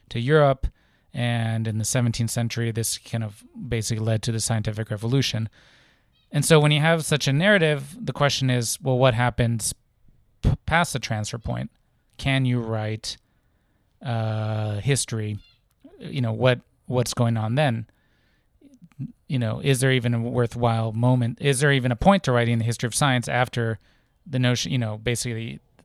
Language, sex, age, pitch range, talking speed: English, male, 30-49, 115-135 Hz, 165 wpm